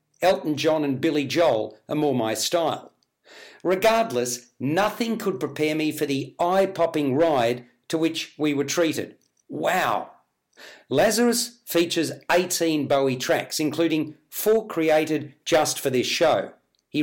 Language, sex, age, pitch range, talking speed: English, male, 50-69, 145-185 Hz, 130 wpm